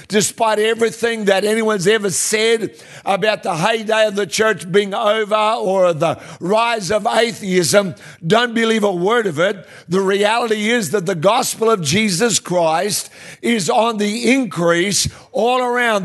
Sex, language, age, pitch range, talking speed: male, English, 60-79, 190-225 Hz, 150 wpm